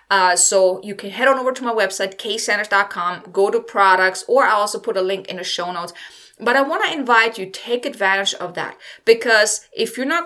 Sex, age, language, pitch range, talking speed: female, 20-39, English, 195-245 Hz, 220 wpm